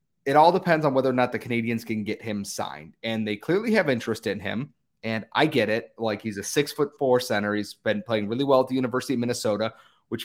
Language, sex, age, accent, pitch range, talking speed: English, male, 30-49, American, 110-140 Hz, 245 wpm